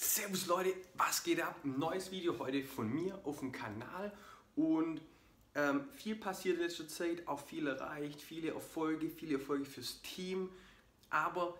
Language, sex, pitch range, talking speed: German, male, 140-175 Hz, 160 wpm